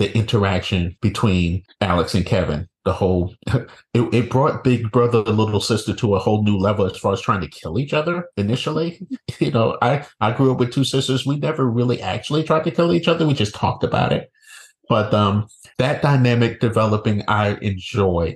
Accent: American